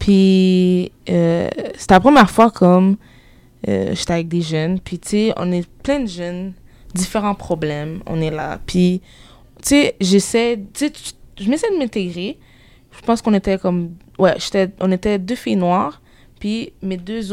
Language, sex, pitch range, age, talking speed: English, female, 175-230 Hz, 20-39, 175 wpm